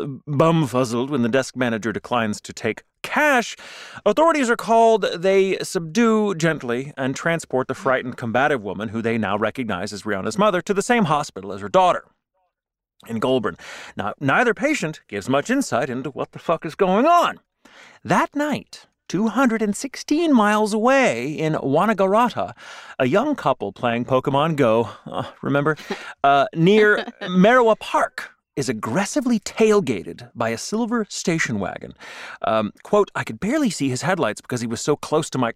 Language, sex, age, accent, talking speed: English, male, 30-49, American, 155 wpm